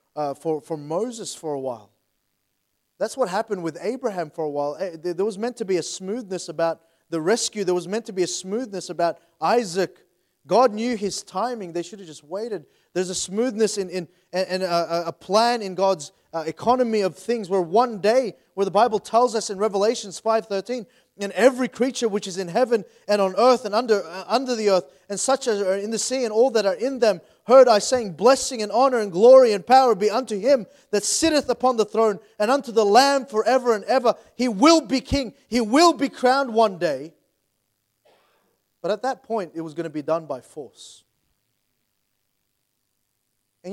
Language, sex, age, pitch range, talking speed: English, male, 30-49, 170-235 Hz, 205 wpm